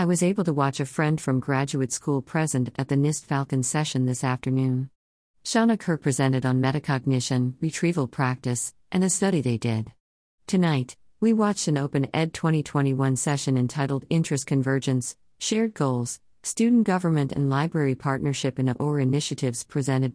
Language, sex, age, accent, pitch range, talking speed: English, female, 50-69, American, 130-155 Hz, 155 wpm